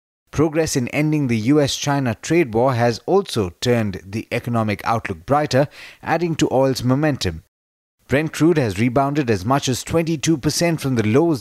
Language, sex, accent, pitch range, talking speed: English, male, Indian, 110-150 Hz, 155 wpm